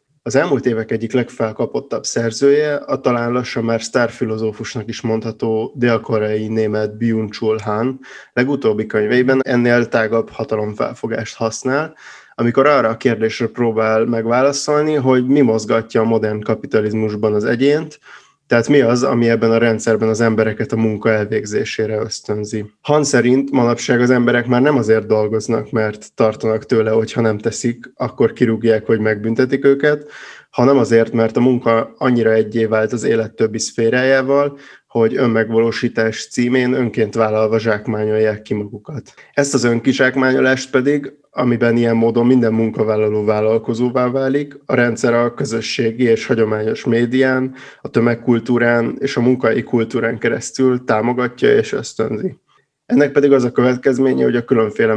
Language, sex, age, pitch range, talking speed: Hungarian, male, 20-39, 110-130 Hz, 140 wpm